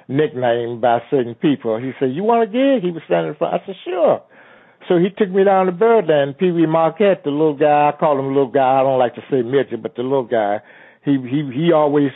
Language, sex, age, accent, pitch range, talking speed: English, male, 60-79, American, 130-175 Hz, 245 wpm